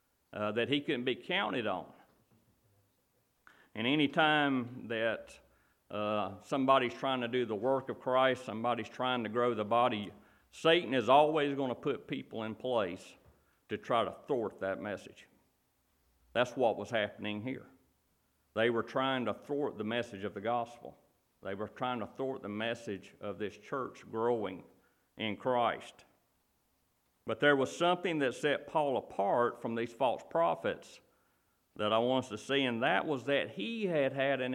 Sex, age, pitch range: male, 50-69, 110-135 Hz